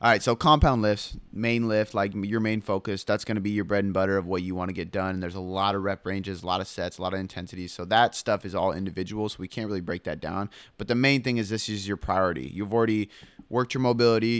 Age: 20-39